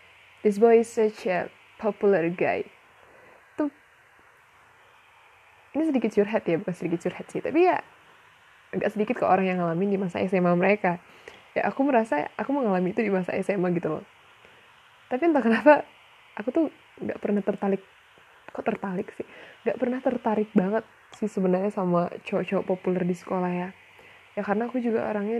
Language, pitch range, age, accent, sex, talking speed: Indonesian, 185-235 Hz, 10-29, native, female, 160 wpm